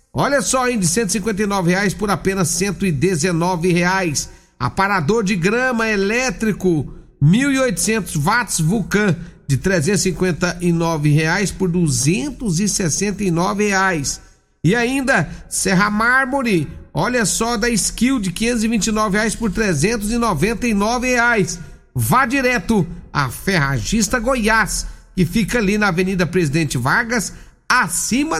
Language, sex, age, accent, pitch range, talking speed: Portuguese, male, 50-69, Brazilian, 165-215 Hz, 105 wpm